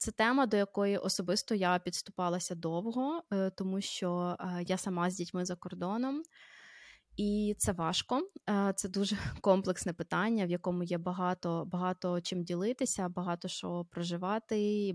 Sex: female